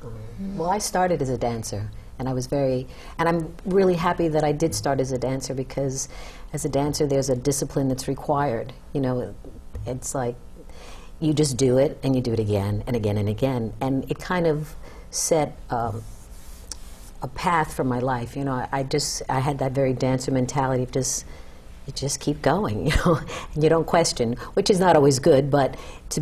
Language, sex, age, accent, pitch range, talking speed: English, female, 50-69, American, 125-155 Hz, 205 wpm